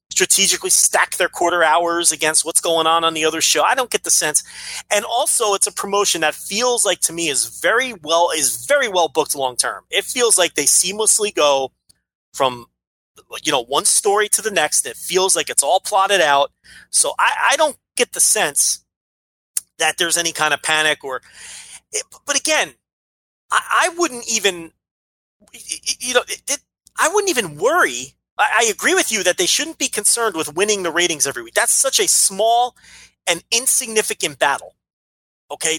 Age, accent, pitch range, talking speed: 30-49, American, 155-240 Hz, 180 wpm